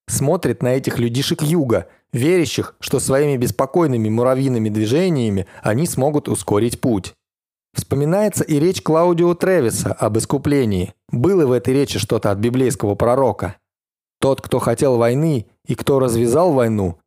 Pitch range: 110-145 Hz